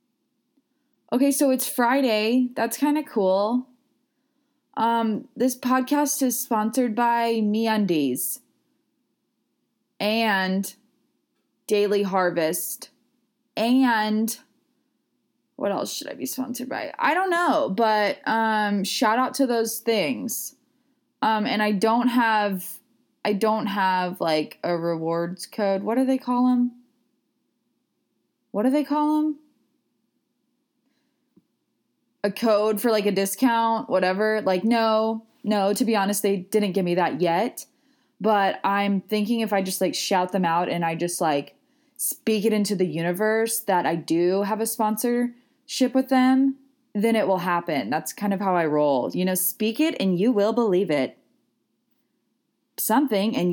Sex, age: female, 20-39